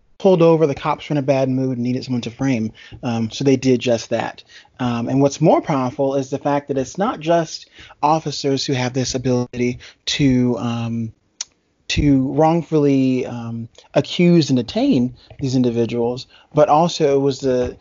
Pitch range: 125-150 Hz